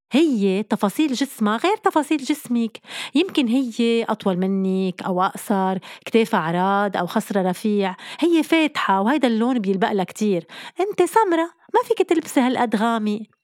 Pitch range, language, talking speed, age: 195-270 Hz, Arabic, 130 wpm, 30-49